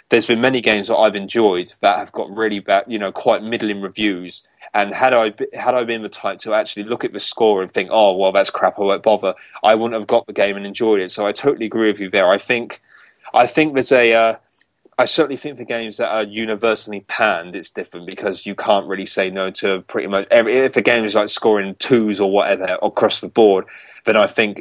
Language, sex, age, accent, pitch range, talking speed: English, male, 20-39, British, 100-115 Hz, 245 wpm